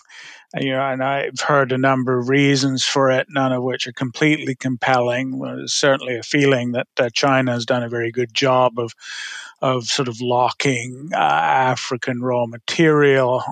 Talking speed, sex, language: 175 wpm, male, English